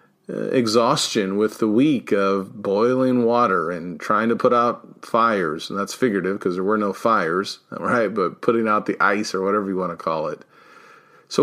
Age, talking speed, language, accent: 40-59, 185 wpm, English, American